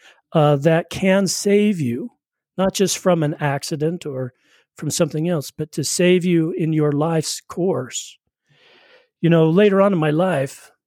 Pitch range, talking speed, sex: 145-175 Hz, 160 wpm, male